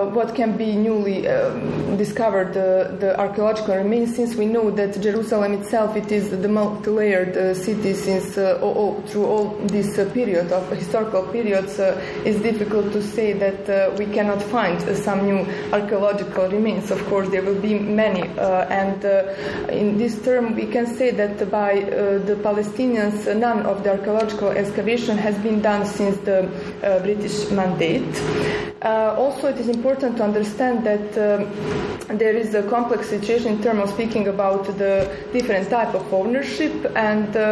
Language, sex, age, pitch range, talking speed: Turkish, female, 20-39, 200-225 Hz, 170 wpm